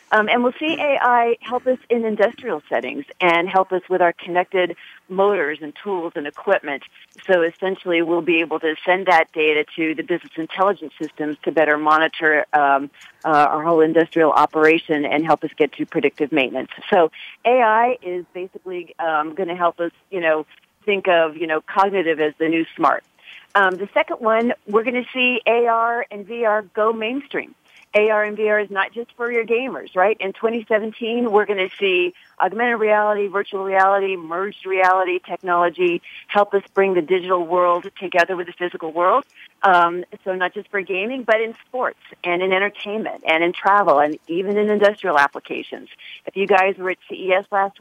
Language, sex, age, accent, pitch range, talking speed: English, female, 40-59, American, 170-220 Hz, 180 wpm